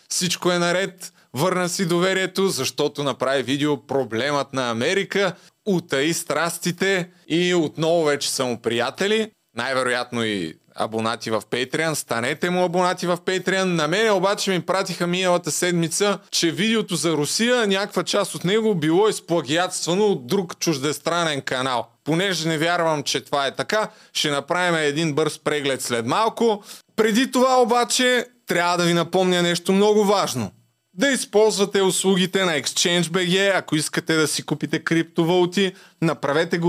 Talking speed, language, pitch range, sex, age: 140 wpm, Bulgarian, 150-190 Hz, male, 20-39